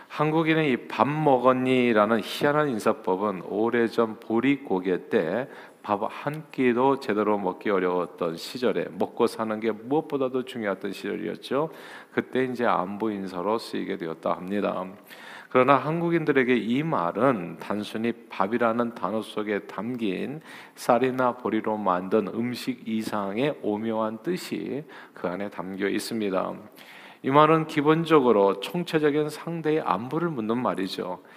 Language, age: Korean, 40-59